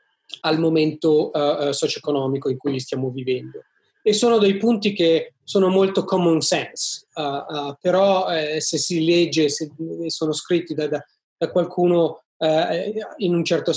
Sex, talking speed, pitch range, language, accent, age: male, 150 wpm, 155-180 Hz, English, Italian, 30-49